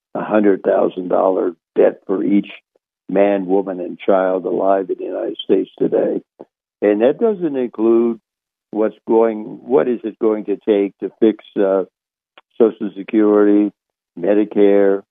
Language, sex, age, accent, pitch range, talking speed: English, male, 60-79, American, 95-110 Hz, 135 wpm